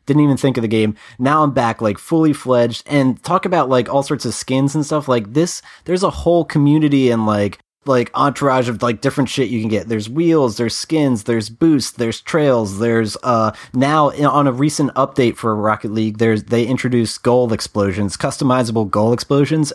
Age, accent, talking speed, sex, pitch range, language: 30-49, American, 200 wpm, male, 110-135 Hz, English